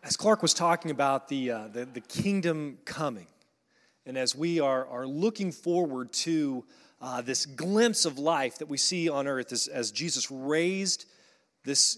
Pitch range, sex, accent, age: 135-170 Hz, male, American, 30-49